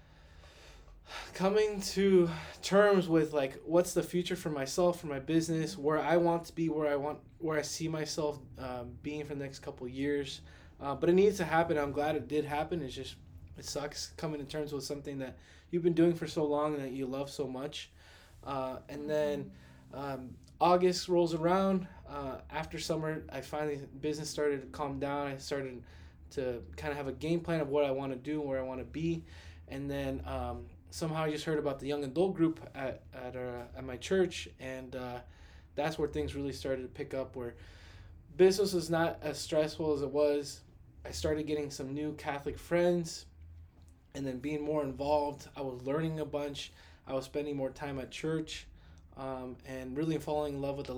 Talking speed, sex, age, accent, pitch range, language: 200 wpm, male, 20-39, American, 125-155 Hz, English